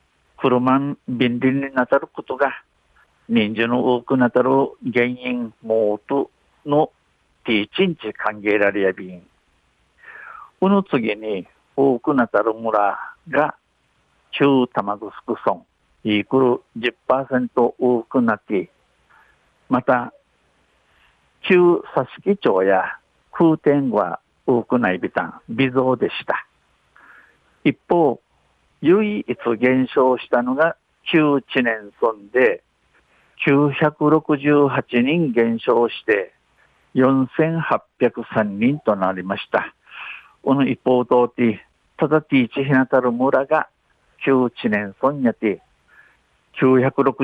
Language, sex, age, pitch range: Japanese, male, 60-79, 115-140 Hz